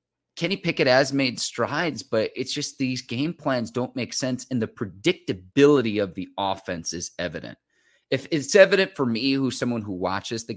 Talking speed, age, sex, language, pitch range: 180 wpm, 30-49, male, English, 100-125 Hz